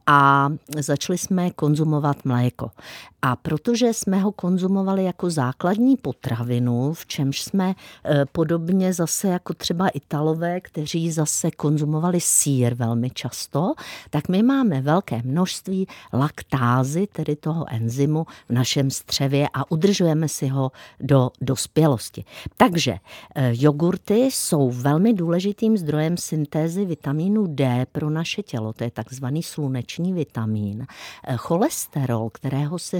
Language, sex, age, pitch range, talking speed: Czech, female, 50-69, 135-185 Hz, 120 wpm